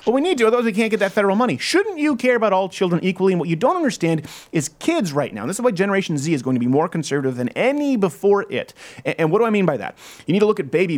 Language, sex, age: English, male, 30-49